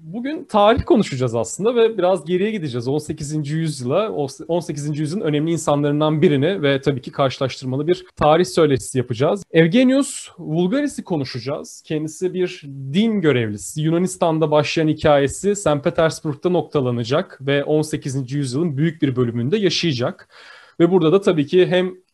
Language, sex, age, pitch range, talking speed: Turkish, male, 30-49, 145-180 Hz, 135 wpm